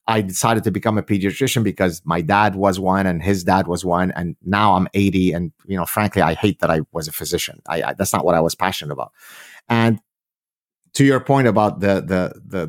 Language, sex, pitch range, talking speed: English, male, 95-120 Hz, 225 wpm